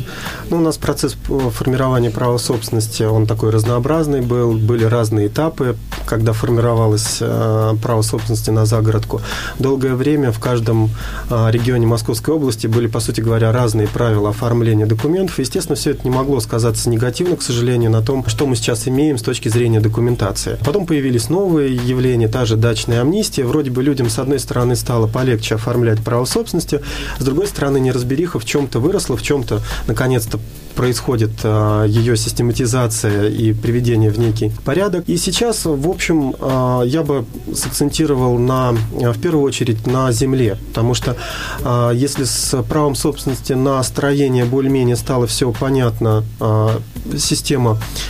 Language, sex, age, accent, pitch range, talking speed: Russian, male, 30-49, native, 115-140 Hz, 145 wpm